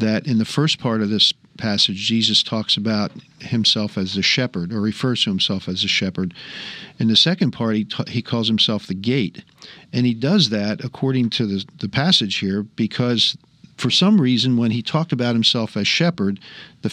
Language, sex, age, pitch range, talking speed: English, male, 50-69, 110-135 Hz, 195 wpm